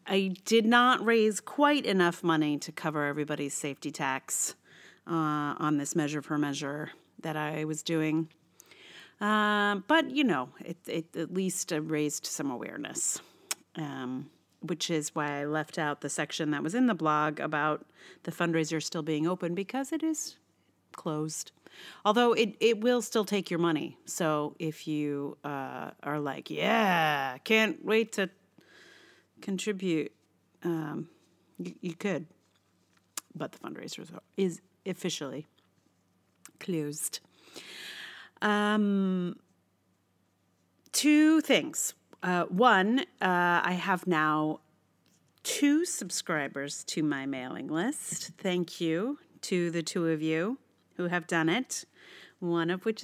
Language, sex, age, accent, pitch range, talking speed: English, female, 40-59, American, 150-205 Hz, 130 wpm